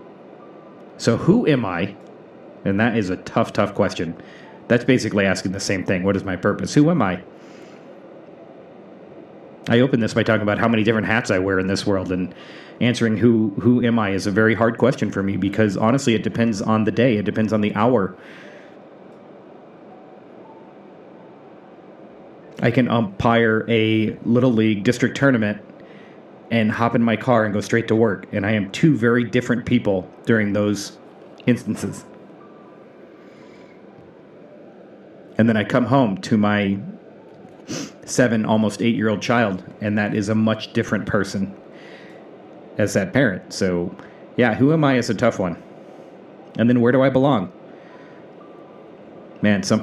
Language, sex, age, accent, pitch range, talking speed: English, male, 30-49, American, 105-120 Hz, 155 wpm